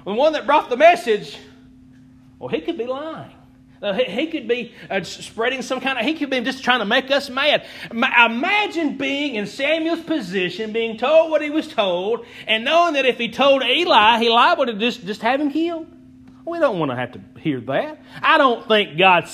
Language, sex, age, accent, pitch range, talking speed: English, male, 40-59, American, 165-260 Hz, 200 wpm